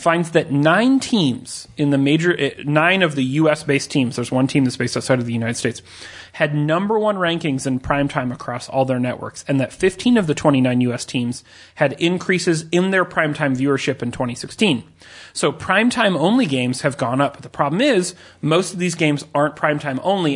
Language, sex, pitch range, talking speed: English, male, 130-165 Hz, 195 wpm